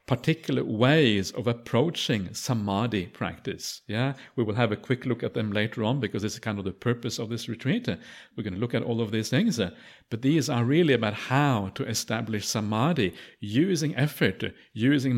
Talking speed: 185 wpm